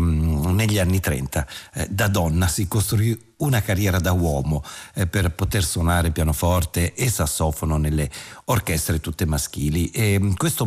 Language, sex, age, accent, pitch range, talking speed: Italian, male, 50-69, native, 85-110 Hz, 140 wpm